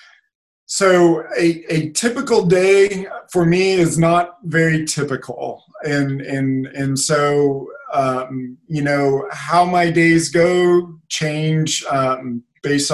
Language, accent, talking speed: English, American, 115 wpm